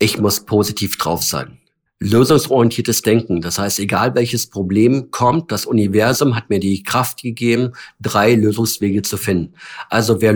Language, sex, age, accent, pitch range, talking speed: German, male, 50-69, German, 110-145 Hz, 150 wpm